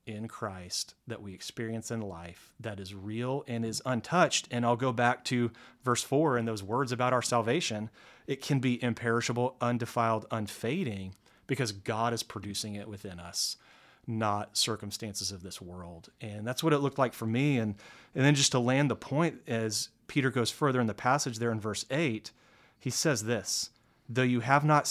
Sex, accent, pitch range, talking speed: male, American, 100-125 Hz, 190 wpm